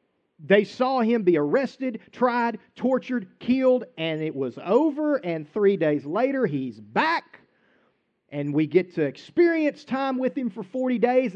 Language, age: English, 40-59